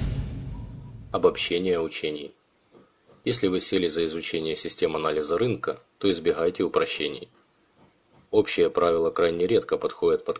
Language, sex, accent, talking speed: Russian, male, native, 110 wpm